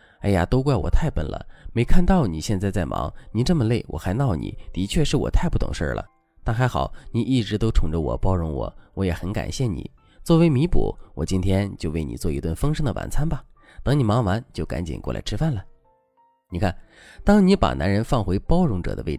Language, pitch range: Chinese, 85-145 Hz